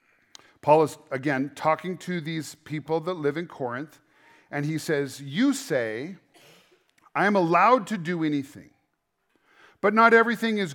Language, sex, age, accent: English, male, 40-59, American